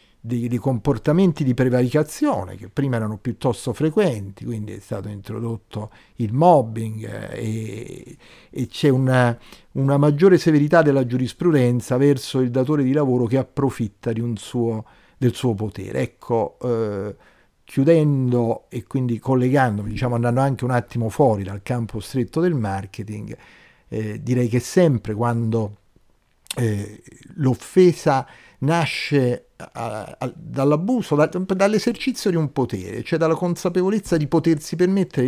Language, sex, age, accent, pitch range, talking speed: Italian, male, 50-69, native, 115-150 Hz, 125 wpm